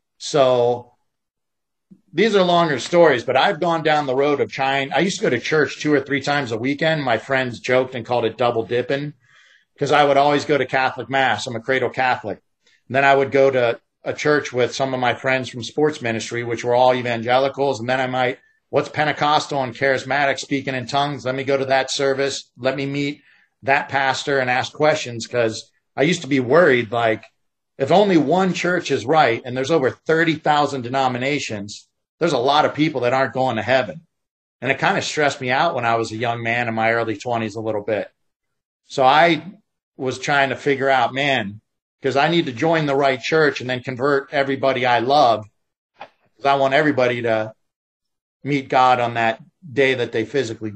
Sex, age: male, 50-69